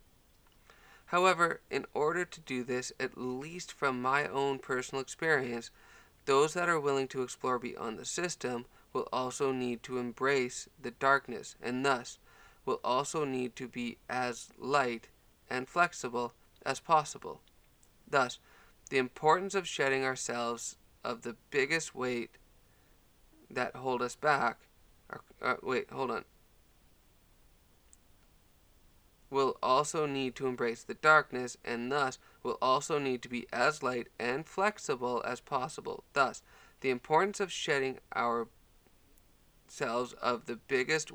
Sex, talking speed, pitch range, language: male, 130 wpm, 115-140 Hz, English